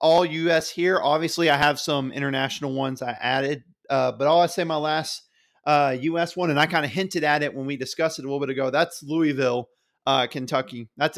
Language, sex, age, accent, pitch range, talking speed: English, male, 30-49, American, 140-165 Hz, 220 wpm